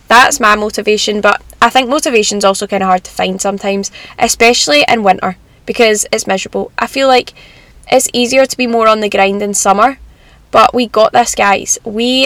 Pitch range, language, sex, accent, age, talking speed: 205-255 Hz, English, female, British, 10-29, 195 wpm